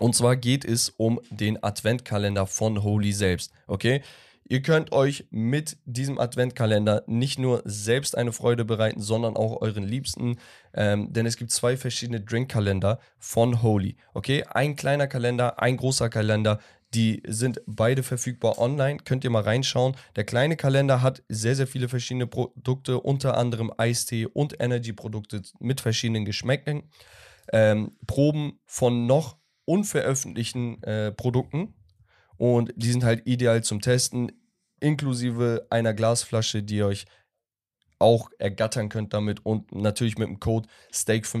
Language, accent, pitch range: German, German, 110-130 Hz